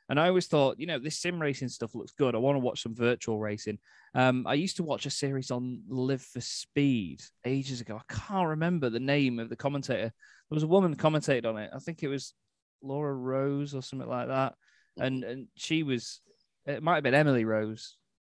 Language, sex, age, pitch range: English, male, 20-39, 110-135 Hz